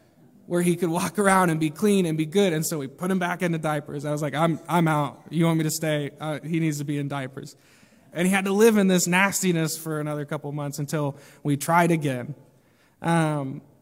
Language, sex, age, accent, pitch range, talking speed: English, male, 20-39, American, 150-190 Hz, 240 wpm